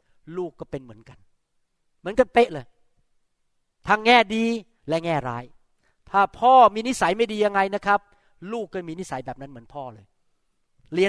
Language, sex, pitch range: Thai, male, 135-180 Hz